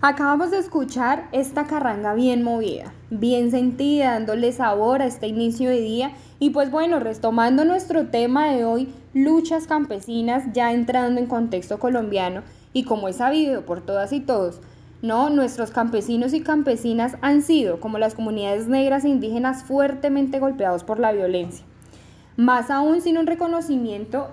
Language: Spanish